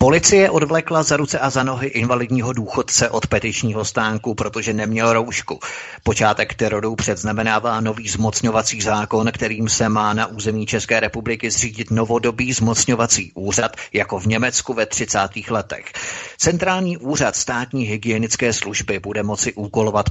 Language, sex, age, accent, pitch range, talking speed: Czech, male, 30-49, native, 105-125 Hz, 135 wpm